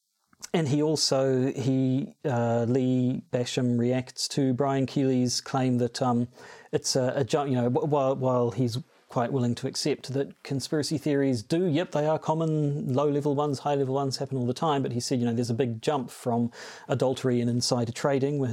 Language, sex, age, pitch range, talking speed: English, male, 40-59, 125-150 Hz, 190 wpm